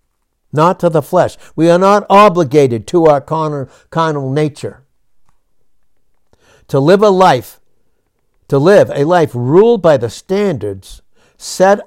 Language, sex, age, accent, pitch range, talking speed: English, male, 60-79, American, 120-170 Hz, 125 wpm